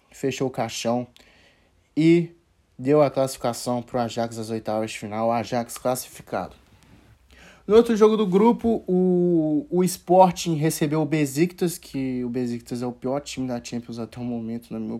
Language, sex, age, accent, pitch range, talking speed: Portuguese, male, 20-39, Brazilian, 120-170 Hz, 165 wpm